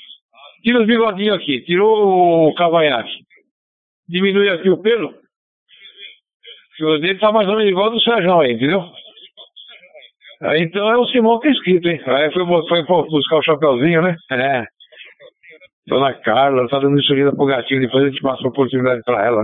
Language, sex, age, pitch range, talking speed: Portuguese, male, 60-79, 135-180 Hz, 175 wpm